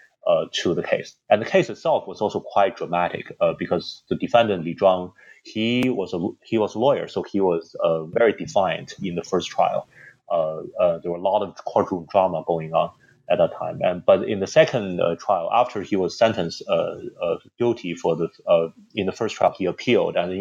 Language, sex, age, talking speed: English, male, 30-49, 210 wpm